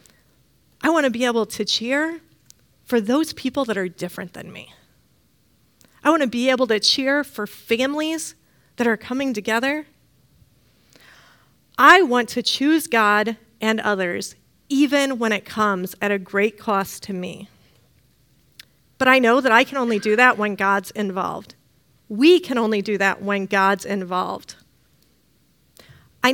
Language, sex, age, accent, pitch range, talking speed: English, female, 30-49, American, 210-275 Hz, 150 wpm